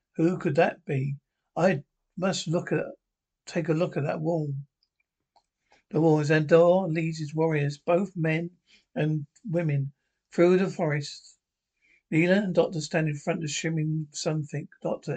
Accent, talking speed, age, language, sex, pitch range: British, 150 wpm, 60-79, English, male, 150-175 Hz